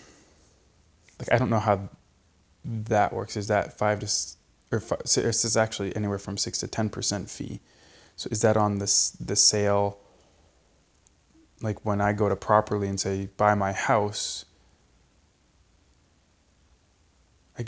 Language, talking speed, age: English, 145 wpm, 20-39